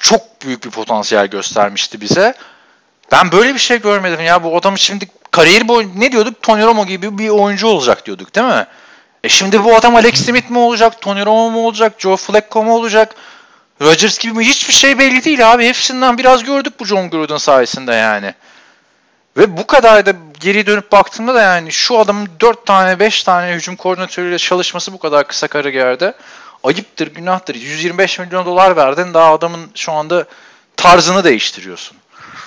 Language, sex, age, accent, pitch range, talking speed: Turkish, male, 40-59, native, 140-220 Hz, 175 wpm